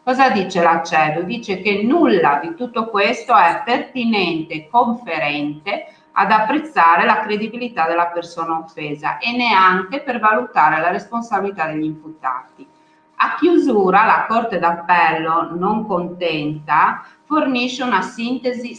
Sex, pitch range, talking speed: female, 165-230 Hz, 120 wpm